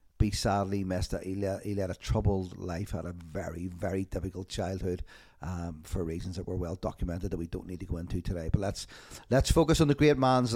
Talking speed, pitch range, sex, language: 220 wpm, 100-125 Hz, male, English